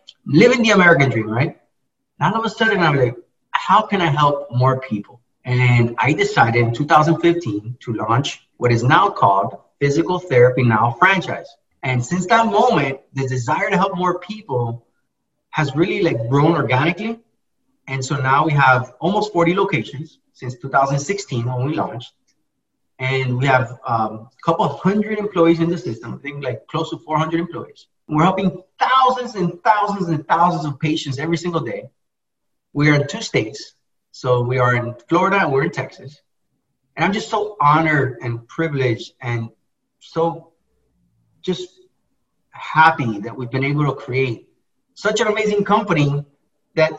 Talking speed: 165 wpm